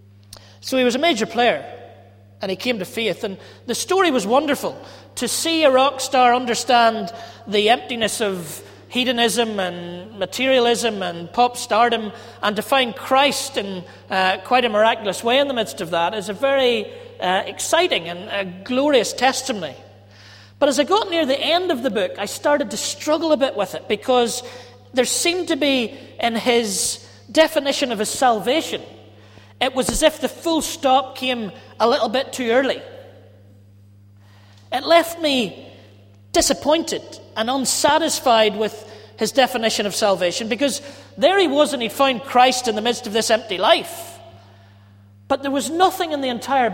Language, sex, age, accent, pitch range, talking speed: English, male, 40-59, British, 190-265 Hz, 165 wpm